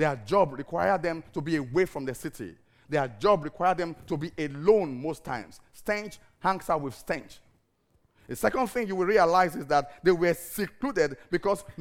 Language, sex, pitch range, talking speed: English, male, 155-250 Hz, 185 wpm